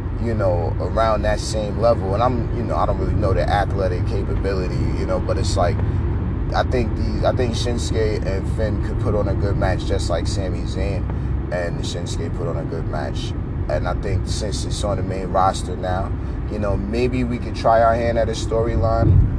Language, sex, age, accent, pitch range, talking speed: English, male, 30-49, American, 90-115 Hz, 210 wpm